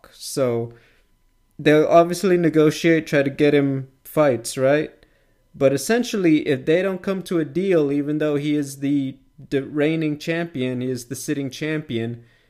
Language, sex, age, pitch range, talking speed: English, male, 30-49, 135-165 Hz, 150 wpm